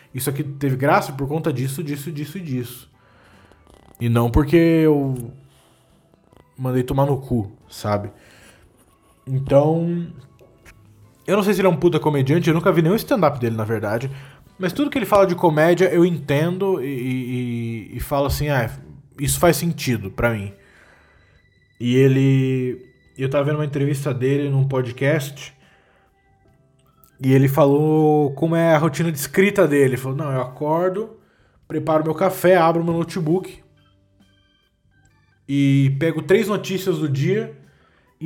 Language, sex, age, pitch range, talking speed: Portuguese, male, 20-39, 130-170 Hz, 150 wpm